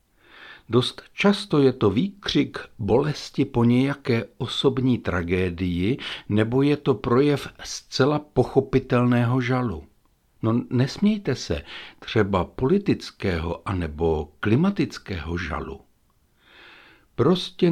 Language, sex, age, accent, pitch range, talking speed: Czech, male, 60-79, native, 100-140 Hz, 90 wpm